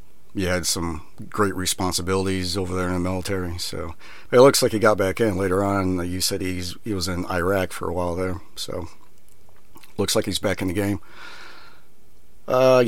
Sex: male